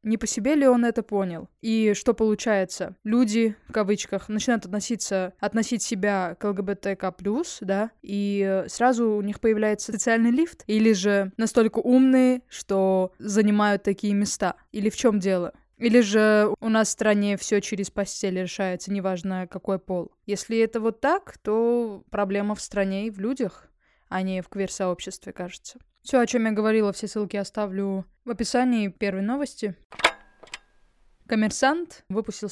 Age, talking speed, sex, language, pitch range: 20-39, 155 wpm, female, Russian, 195-230 Hz